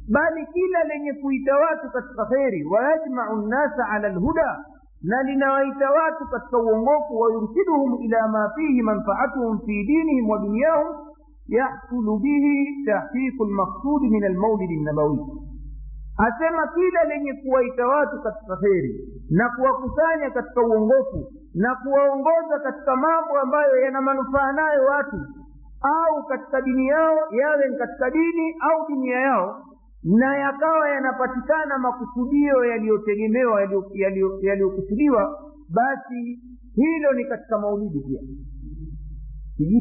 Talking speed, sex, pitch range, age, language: 115 wpm, male, 215-280 Hz, 50-69, Swahili